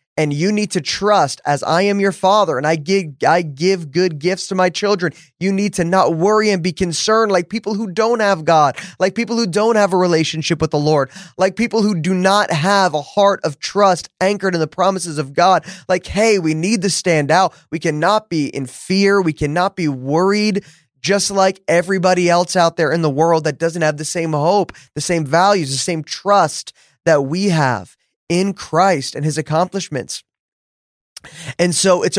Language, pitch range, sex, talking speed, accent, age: English, 160-200 Hz, male, 200 wpm, American, 20-39